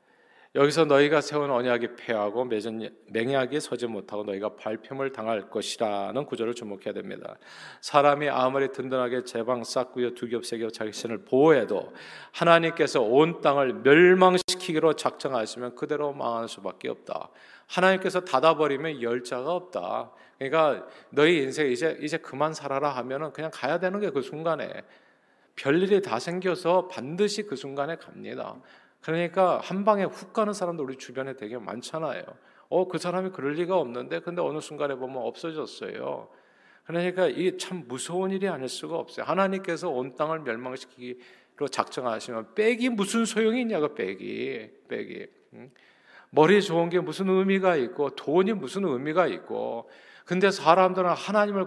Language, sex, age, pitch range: Korean, male, 40-59, 130-185 Hz